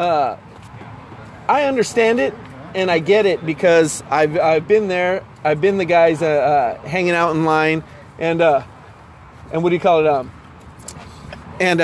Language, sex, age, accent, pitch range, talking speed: English, male, 30-49, American, 155-225 Hz, 165 wpm